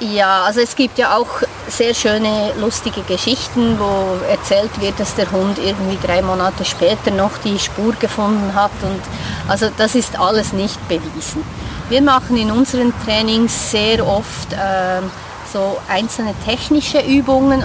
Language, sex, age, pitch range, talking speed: German, female, 30-49, 195-245 Hz, 145 wpm